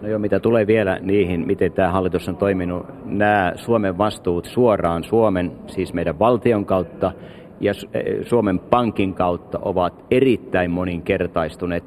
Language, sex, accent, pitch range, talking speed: Finnish, male, native, 90-110 Hz, 135 wpm